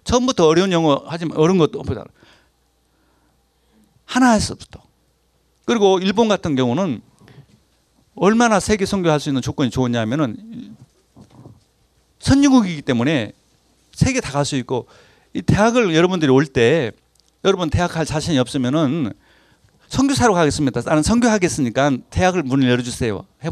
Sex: male